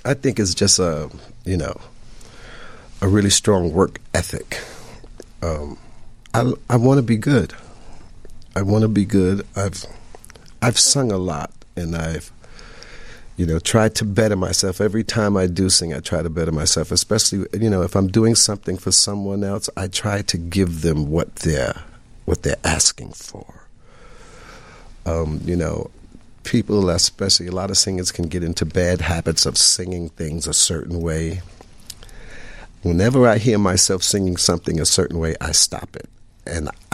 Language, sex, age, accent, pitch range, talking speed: English, male, 50-69, American, 85-110 Hz, 165 wpm